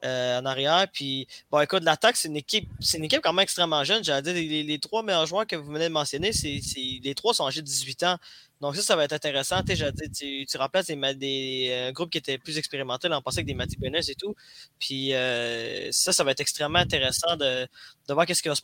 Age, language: 20-39, French